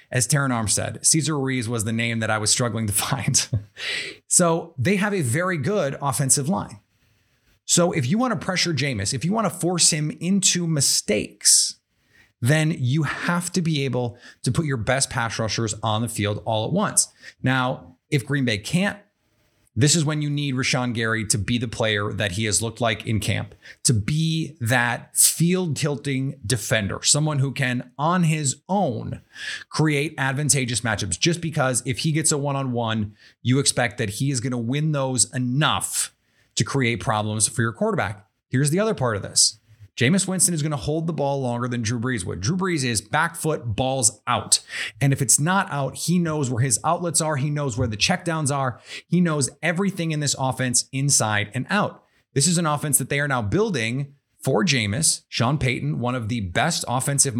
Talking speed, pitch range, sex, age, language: 195 wpm, 115-155 Hz, male, 30-49, English